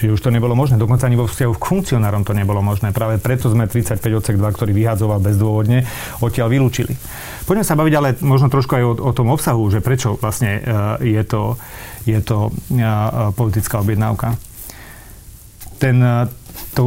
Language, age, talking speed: Slovak, 40-59, 175 wpm